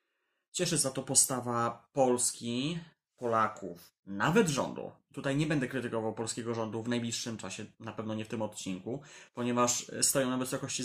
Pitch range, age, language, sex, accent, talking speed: 110-130 Hz, 20-39, Polish, male, native, 150 wpm